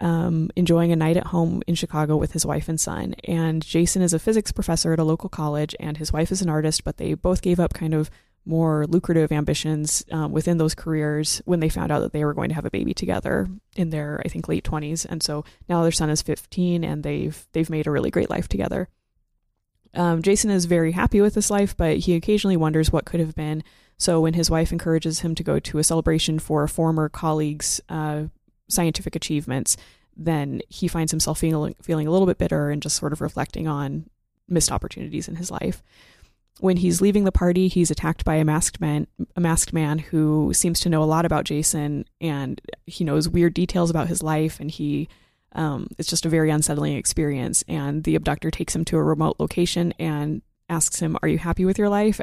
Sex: female